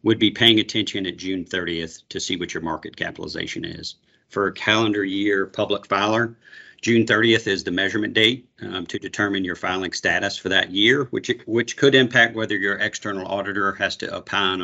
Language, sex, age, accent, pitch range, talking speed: English, male, 40-59, American, 95-110 Hz, 195 wpm